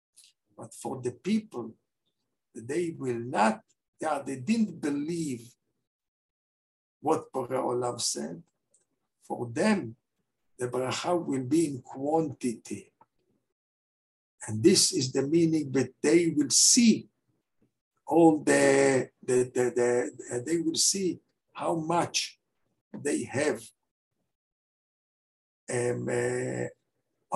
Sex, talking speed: male, 100 wpm